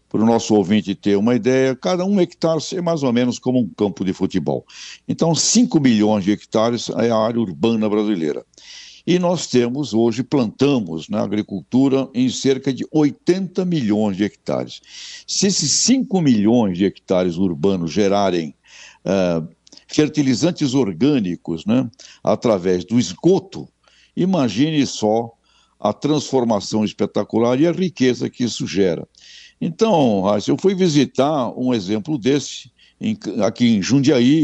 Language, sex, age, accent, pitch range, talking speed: Portuguese, male, 60-79, Brazilian, 105-145 Hz, 140 wpm